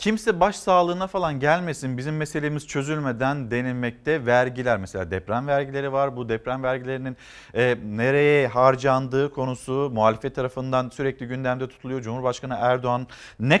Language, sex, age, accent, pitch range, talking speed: Turkish, male, 50-69, native, 130-180 Hz, 125 wpm